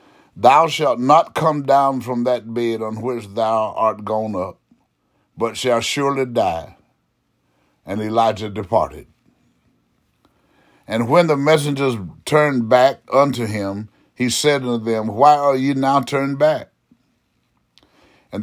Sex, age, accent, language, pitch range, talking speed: male, 60-79, American, English, 120-145 Hz, 130 wpm